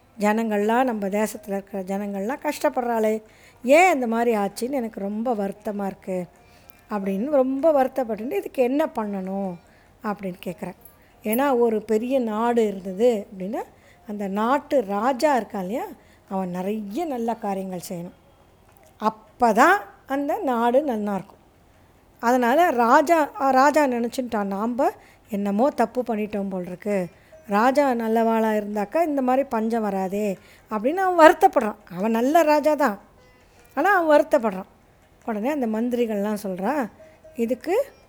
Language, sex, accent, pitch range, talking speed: Tamil, female, native, 205-275 Hz, 115 wpm